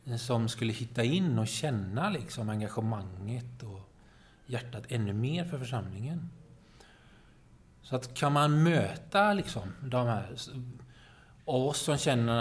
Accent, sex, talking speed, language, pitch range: native, male, 120 wpm, Swedish, 110-140 Hz